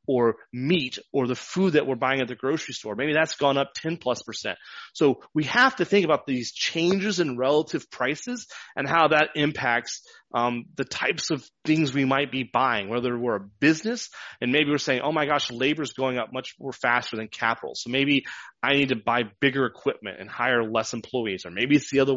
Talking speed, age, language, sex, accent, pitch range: 215 wpm, 30-49, English, male, American, 125-165 Hz